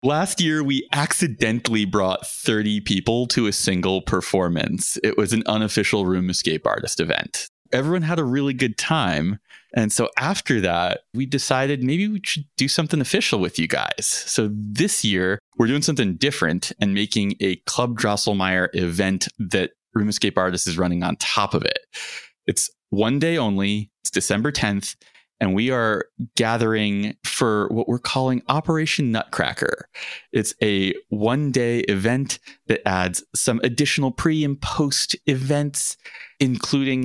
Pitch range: 100-135 Hz